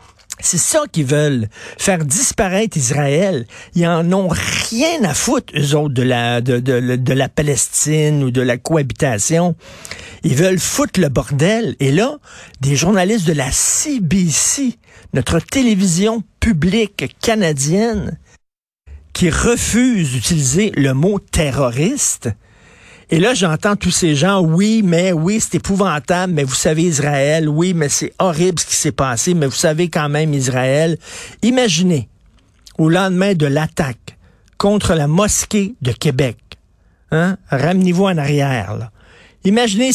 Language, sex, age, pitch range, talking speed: French, male, 50-69, 140-200 Hz, 140 wpm